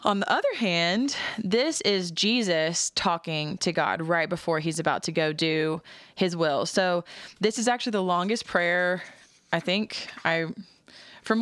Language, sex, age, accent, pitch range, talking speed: English, female, 20-39, American, 165-200 Hz, 160 wpm